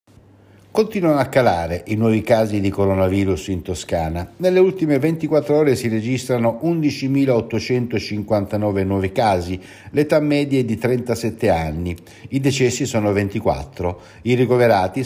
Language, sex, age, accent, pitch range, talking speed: Italian, male, 60-79, native, 95-130 Hz, 125 wpm